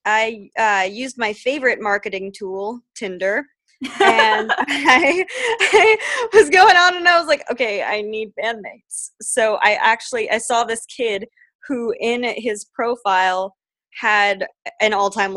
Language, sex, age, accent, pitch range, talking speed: English, female, 20-39, American, 190-245 Hz, 140 wpm